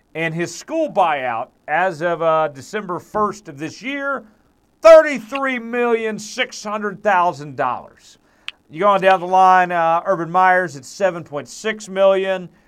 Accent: American